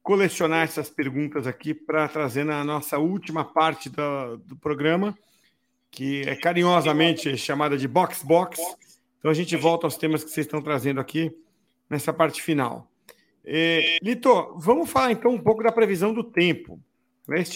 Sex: male